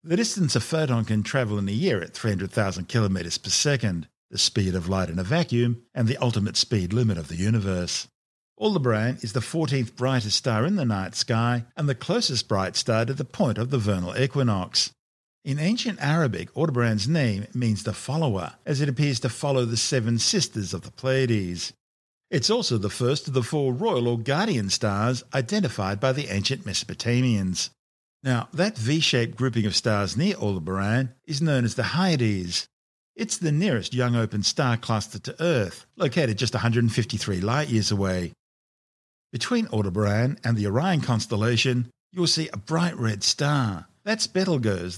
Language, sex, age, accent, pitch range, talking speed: English, male, 50-69, Australian, 105-145 Hz, 170 wpm